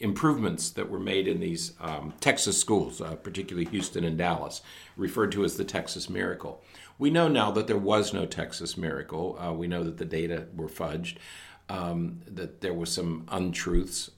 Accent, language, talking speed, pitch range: American, English, 180 wpm, 85-120 Hz